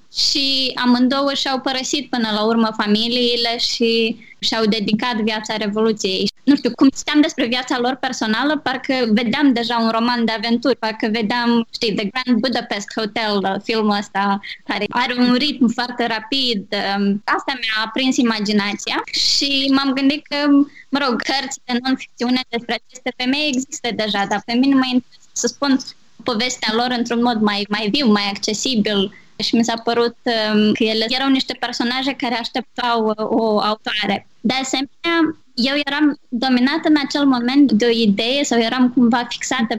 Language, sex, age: Romanian, female, 20-39